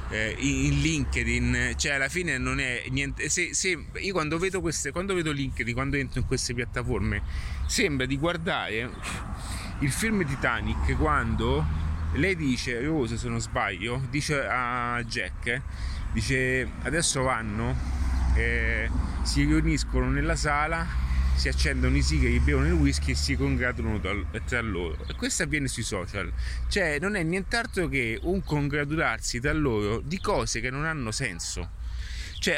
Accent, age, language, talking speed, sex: native, 30-49, Italian, 150 wpm, male